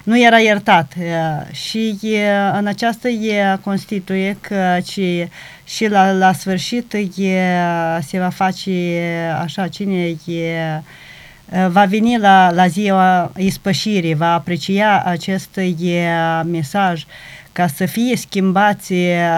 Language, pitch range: Romanian, 170-195 Hz